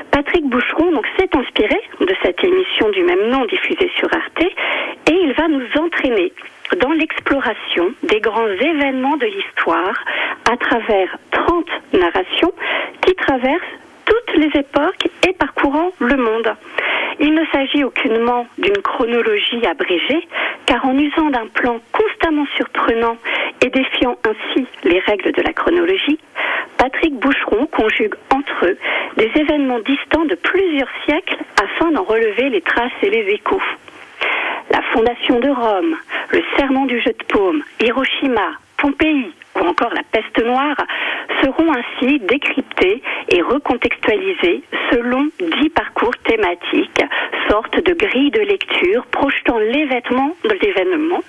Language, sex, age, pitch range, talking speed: French, female, 50-69, 270-370 Hz, 135 wpm